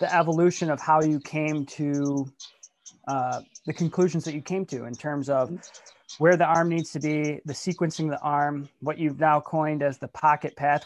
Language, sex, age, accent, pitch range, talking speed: English, male, 20-39, American, 150-175 Hz, 200 wpm